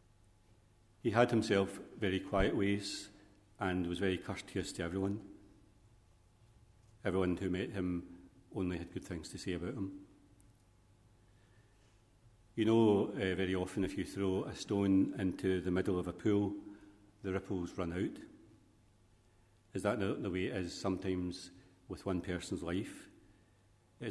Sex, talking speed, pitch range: male, 140 wpm, 90-105 Hz